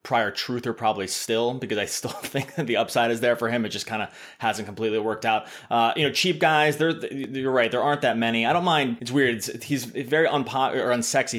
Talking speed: 225 wpm